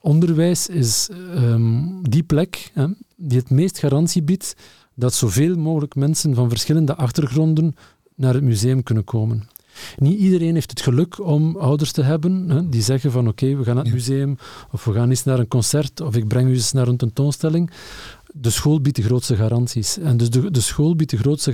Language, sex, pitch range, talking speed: Dutch, male, 120-160 Hz, 200 wpm